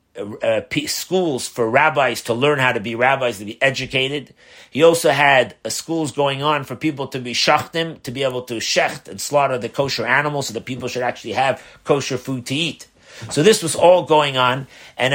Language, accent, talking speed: English, American, 205 wpm